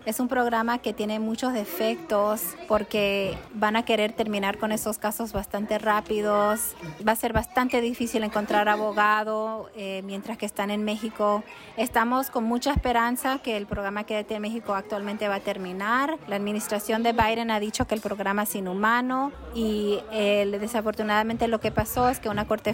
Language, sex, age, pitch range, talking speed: English, female, 30-49, 200-225 Hz, 170 wpm